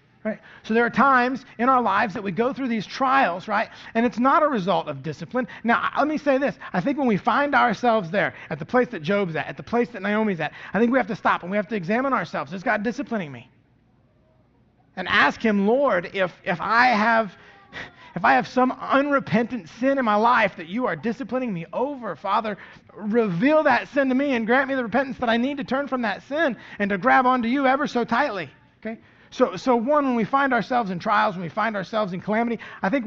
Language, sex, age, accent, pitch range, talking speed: English, male, 30-49, American, 200-265 Hz, 235 wpm